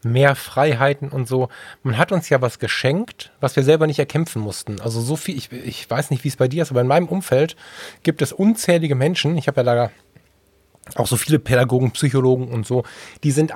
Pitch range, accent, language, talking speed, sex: 120-150 Hz, German, German, 215 wpm, male